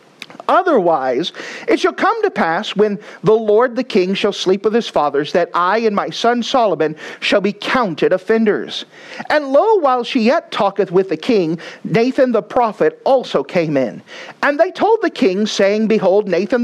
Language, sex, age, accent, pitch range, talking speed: English, male, 40-59, American, 190-260 Hz, 175 wpm